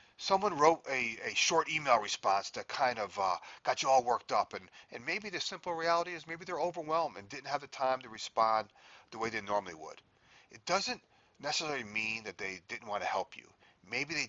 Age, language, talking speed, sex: 40-59, English, 215 wpm, male